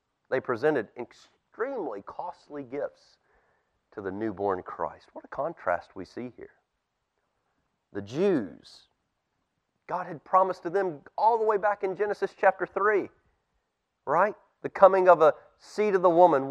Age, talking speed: 30-49, 140 wpm